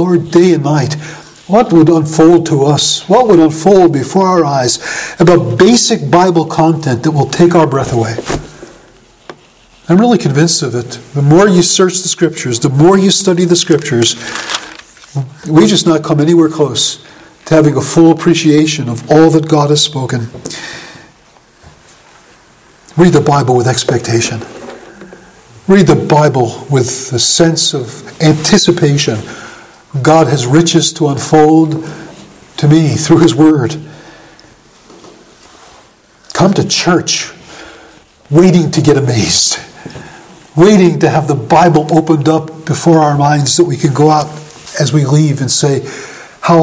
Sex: male